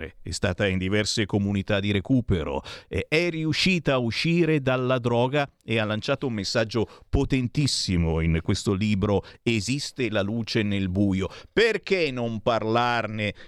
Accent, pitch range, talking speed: native, 105-135 Hz, 135 wpm